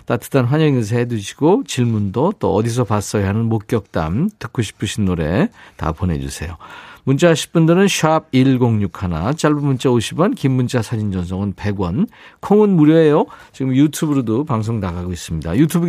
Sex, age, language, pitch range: male, 50-69, Korean, 115-155 Hz